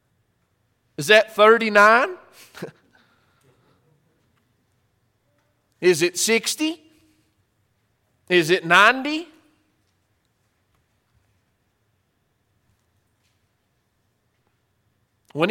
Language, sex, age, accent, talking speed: English, male, 40-59, American, 40 wpm